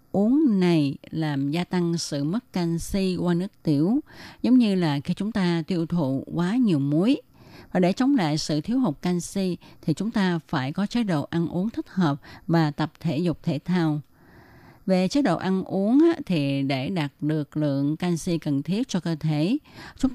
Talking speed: 190 wpm